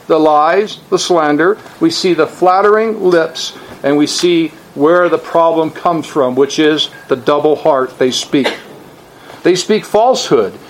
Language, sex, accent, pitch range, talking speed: English, male, American, 145-200 Hz, 150 wpm